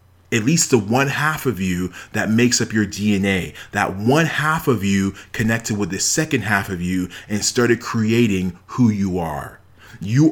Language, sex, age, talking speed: English, male, 30-49, 180 wpm